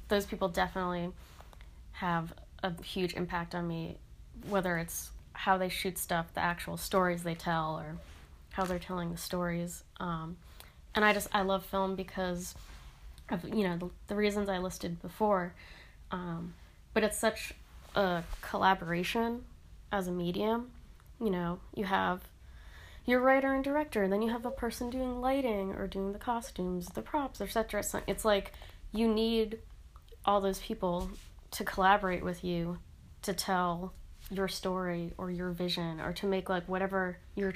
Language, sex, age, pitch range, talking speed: English, female, 20-39, 175-200 Hz, 160 wpm